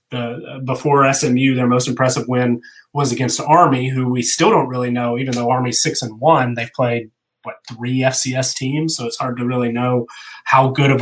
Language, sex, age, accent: English, male, 30-49, American